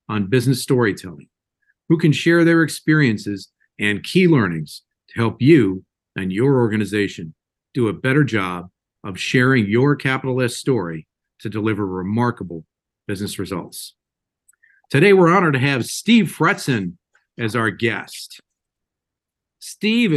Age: 50-69